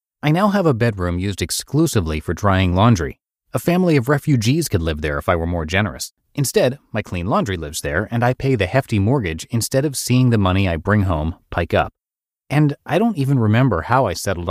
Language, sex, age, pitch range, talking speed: English, male, 30-49, 95-135 Hz, 215 wpm